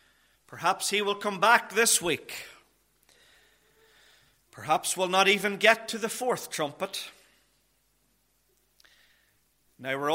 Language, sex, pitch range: English, male, 140-205 Hz